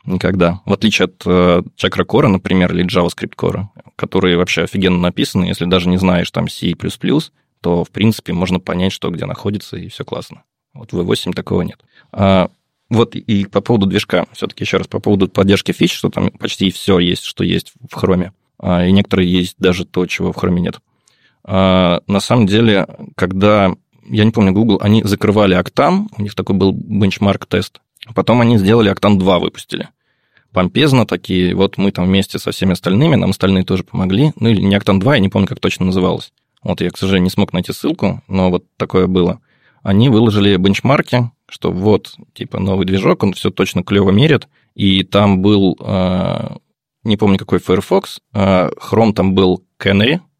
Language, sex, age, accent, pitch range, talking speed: Russian, male, 20-39, native, 90-105 Hz, 180 wpm